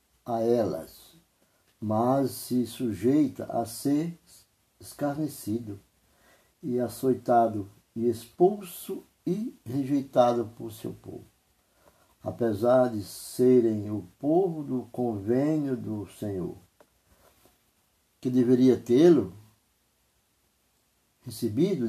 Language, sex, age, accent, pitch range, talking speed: Portuguese, male, 60-79, Brazilian, 110-135 Hz, 80 wpm